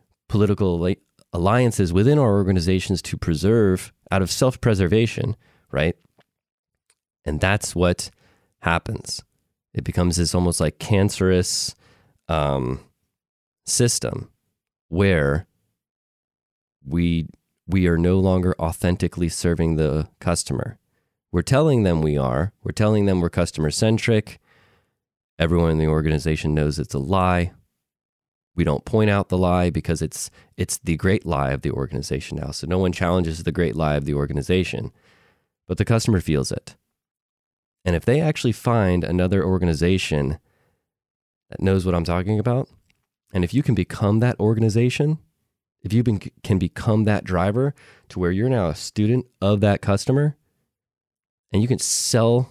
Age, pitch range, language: 20-39, 85-110 Hz, English